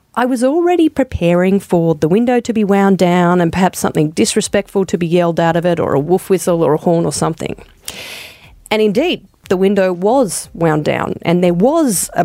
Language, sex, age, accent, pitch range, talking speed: English, female, 40-59, Australian, 180-280 Hz, 200 wpm